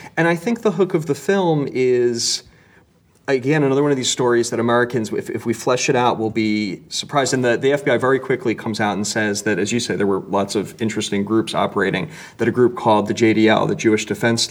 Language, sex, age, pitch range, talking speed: English, male, 30-49, 105-125 Hz, 230 wpm